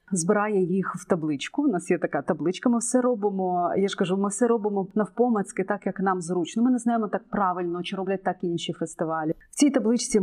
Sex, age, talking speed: female, 30-49, 210 wpm